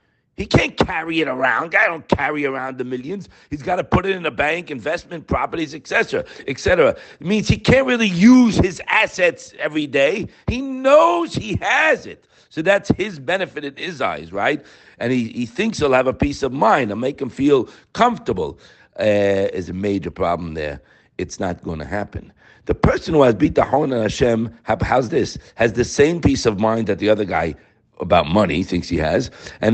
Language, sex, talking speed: English, male, 205 wpm